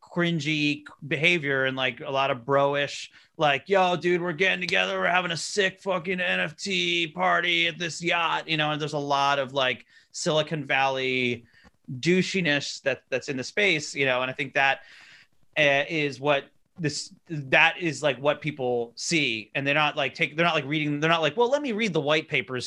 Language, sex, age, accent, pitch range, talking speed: English, male, 30-49, American, 135-165 Hz, 200 wpm